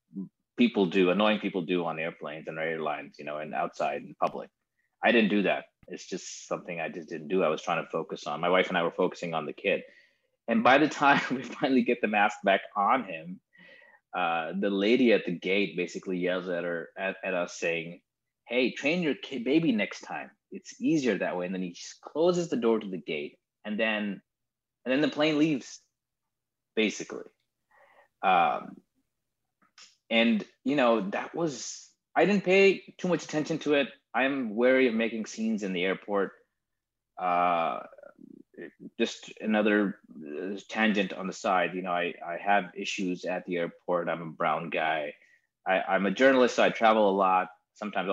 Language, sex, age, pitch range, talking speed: English, male, 20-39, 90-140 Hz, 185 wpm